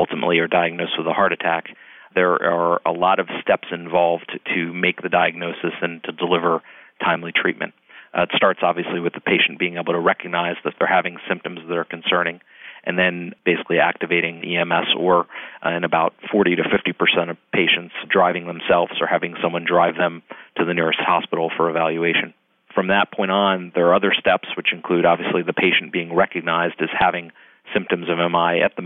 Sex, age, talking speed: male, 40-59, 185 wpm